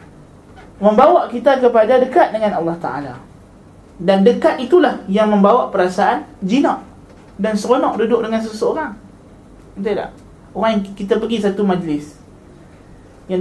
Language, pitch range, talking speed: Malay, 185-235 Hz, 125 wpm